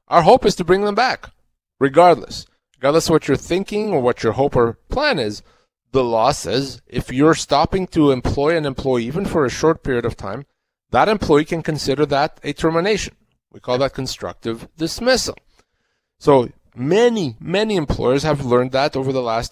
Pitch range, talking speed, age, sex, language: 125-160 Hz, 180 wpm, 30-49, male, English